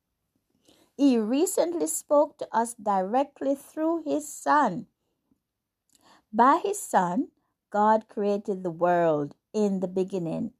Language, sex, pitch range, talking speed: English, female, 200-285 Hz, 110 wpm